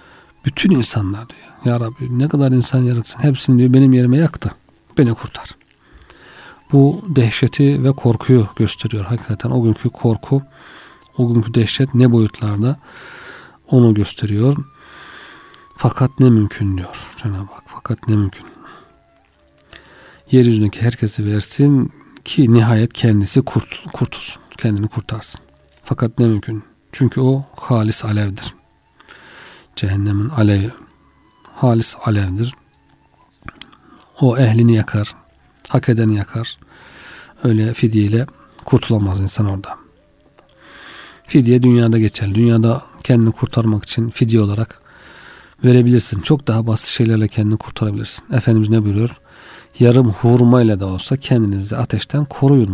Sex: male